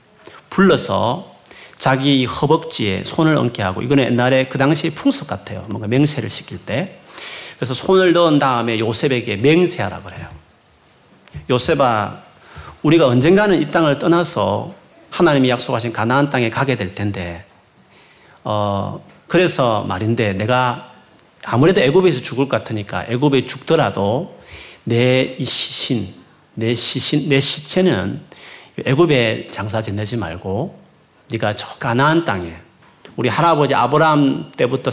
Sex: male